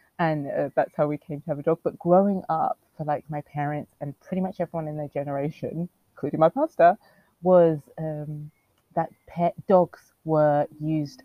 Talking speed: 180 wpm